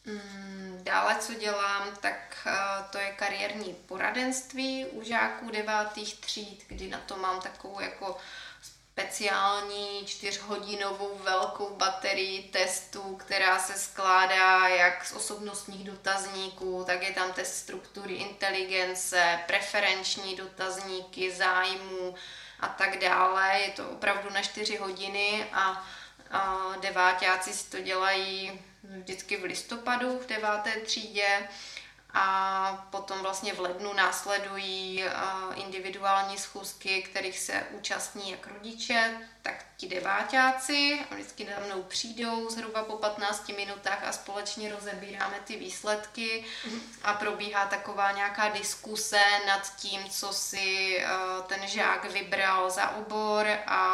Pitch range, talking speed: 190-205 Hz, 120 wpm